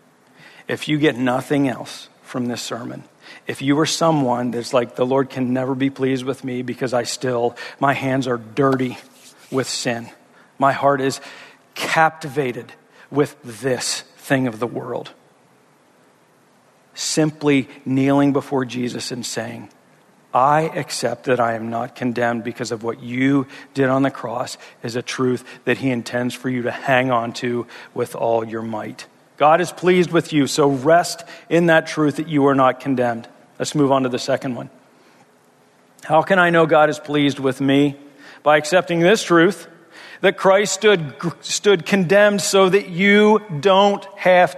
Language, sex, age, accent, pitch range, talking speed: English, male, 50-69, American, 125-170 Hz, 165 wpm